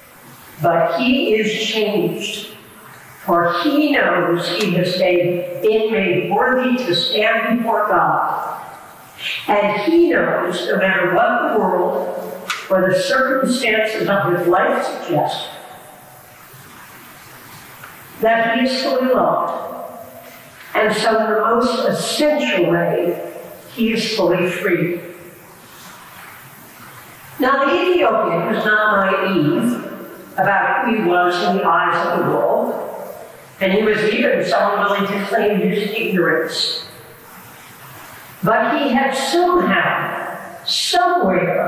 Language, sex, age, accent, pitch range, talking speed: English, female, 50-69, American, 180-245 Hz, 115 wpm